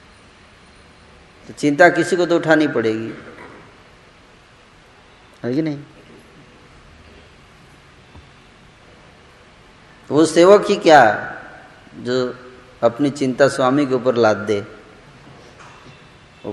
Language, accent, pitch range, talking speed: Hindi, native, 120-160 Hz, 85 wpm